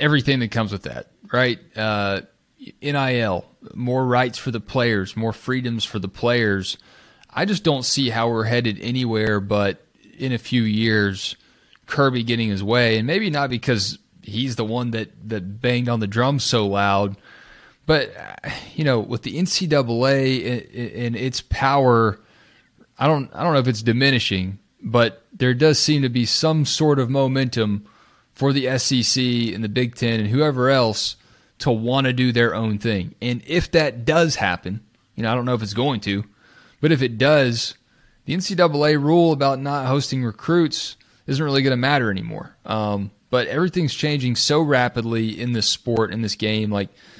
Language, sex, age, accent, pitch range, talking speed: English, male, 30-49, American, 110-135 Hz, 175 wpm